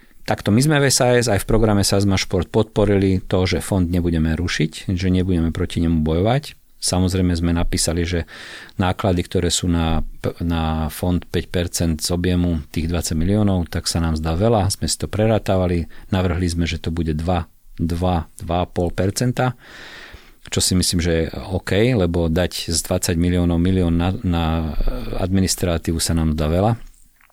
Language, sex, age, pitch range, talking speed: Slovak, male, 40-59, 85-100 Hz, 155 wpm